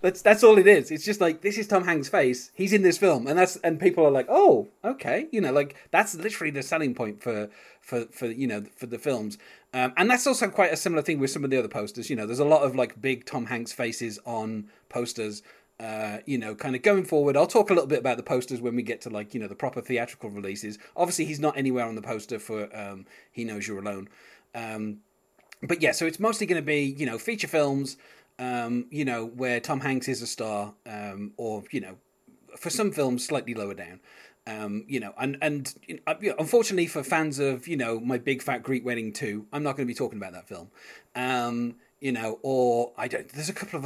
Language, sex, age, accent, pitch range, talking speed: English, male, 30-49, British, 110-155 Hz, 240 wpm